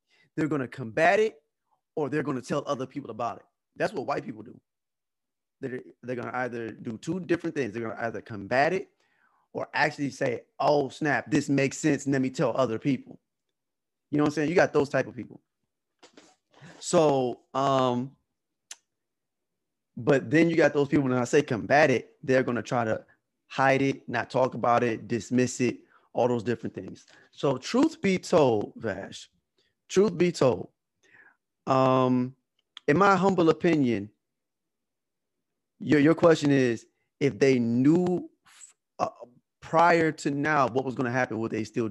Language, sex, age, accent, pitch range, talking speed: English, male, 20-39, American, 125-160 Hz, 170 wpm